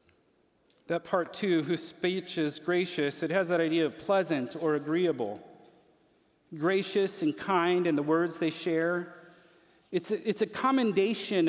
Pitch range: 170-220 Hz